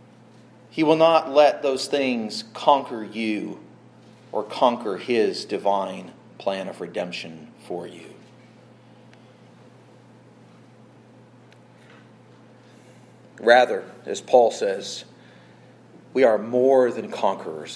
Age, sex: 40-59, male